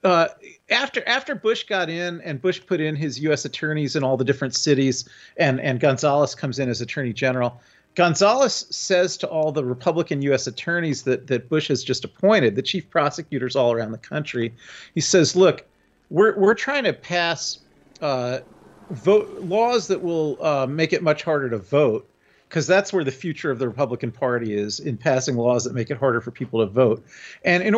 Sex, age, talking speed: male, 50-69, 195 wpm